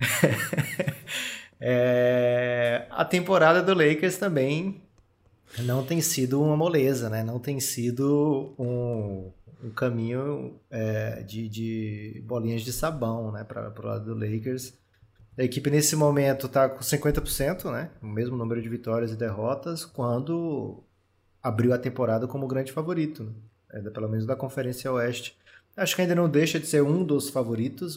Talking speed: 140 wpm